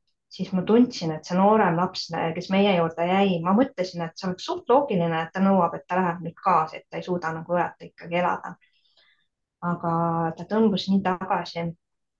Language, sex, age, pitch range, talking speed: English, female, 20-39, 165-195 Hz, 190 wpm